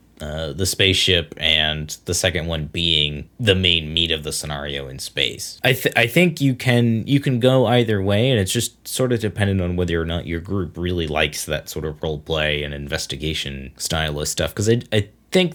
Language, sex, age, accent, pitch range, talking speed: English, male, 20-39, American, 80-110 Hz, 210 wpm